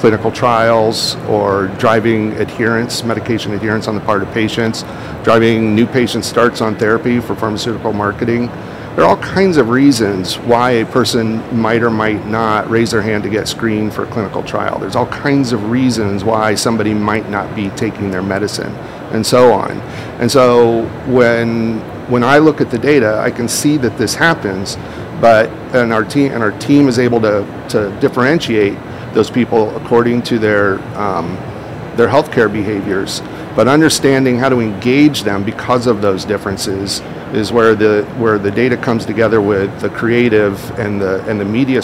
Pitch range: 105-125 Hz